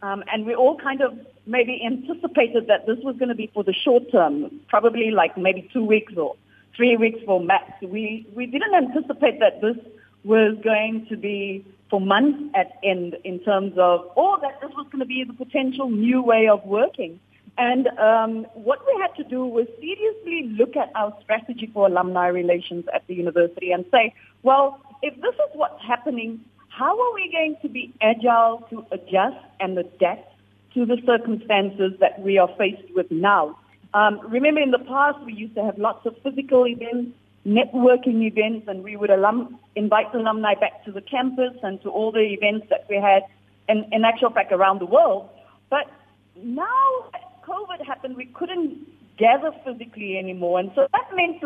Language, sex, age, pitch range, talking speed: English, female, 40-59, 200-270 Hz, 185 wpm